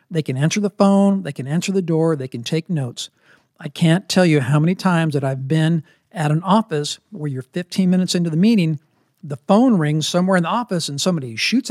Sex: male